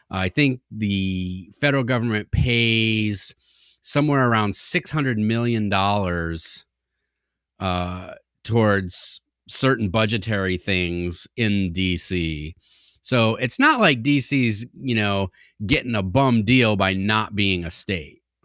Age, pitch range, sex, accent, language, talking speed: 30-49, 90-120 Hz, male, American, English, 105 wpm